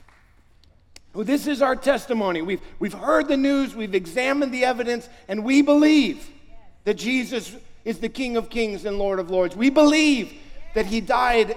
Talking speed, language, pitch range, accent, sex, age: 170 wpm, English, 190-285 Hz, American, male, 50-69